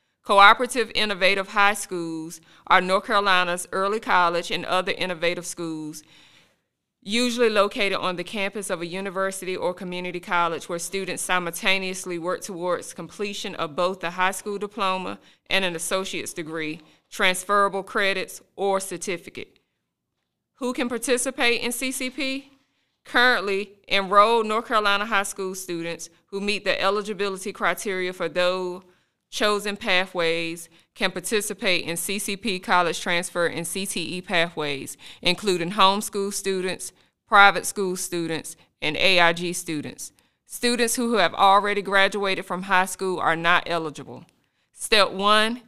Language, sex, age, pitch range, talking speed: English, female, 20-39, 175-205 Hz, 125 wpm